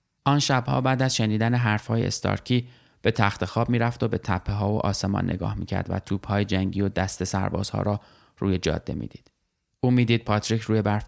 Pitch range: 100-115 Hz